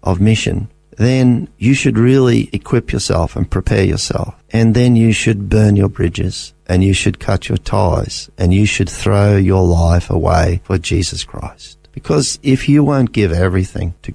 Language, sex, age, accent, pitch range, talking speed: English, male, 50-69, Australian, 95-115 Hz, 175 wpm